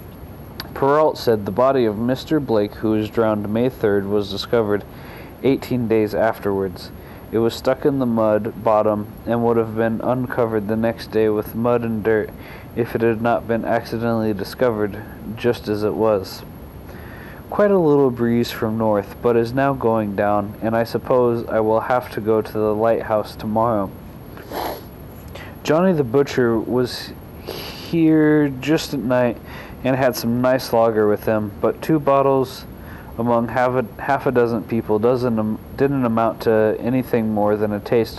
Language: English